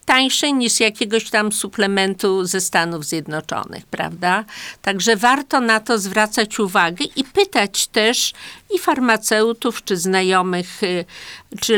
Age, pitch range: 50-69, 180-220 Hz